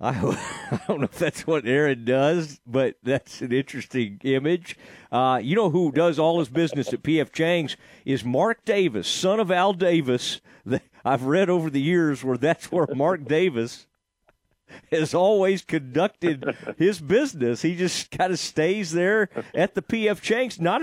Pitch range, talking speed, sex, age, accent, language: 145-185 Hz, 165 wpm, male, 50-69, American, English